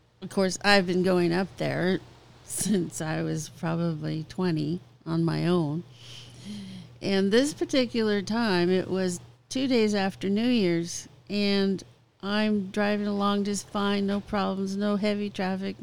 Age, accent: 50-69, American